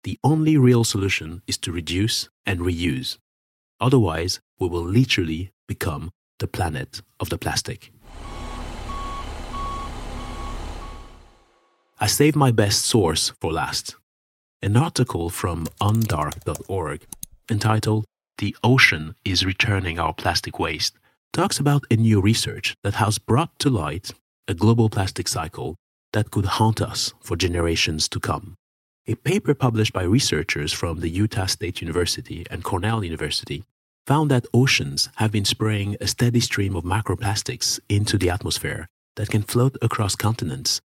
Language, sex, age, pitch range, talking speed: English, male, 30-49, 85-115 Hz, 135 wpm